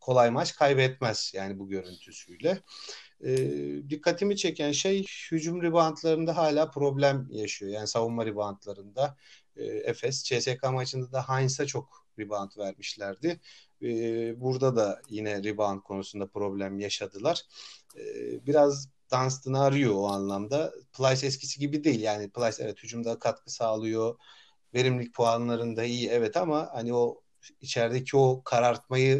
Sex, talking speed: male, 125 wpm